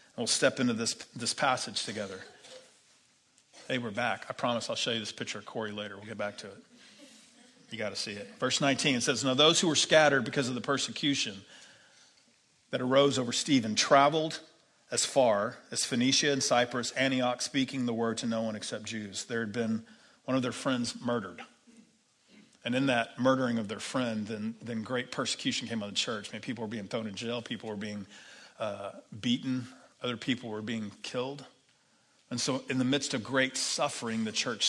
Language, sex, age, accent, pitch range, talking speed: English, male, 40-59, American, 110-140 Hz, 195 wpm